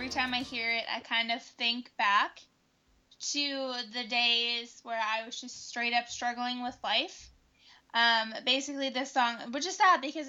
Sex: female